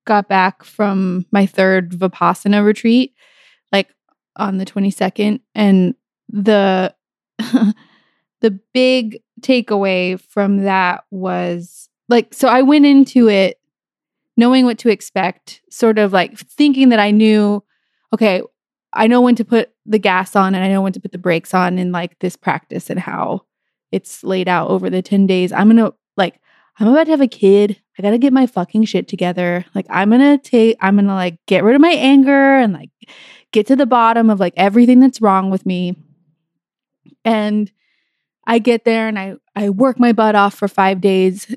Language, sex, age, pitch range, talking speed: English, female, 20-39, 185-230 Hz, 180 wpm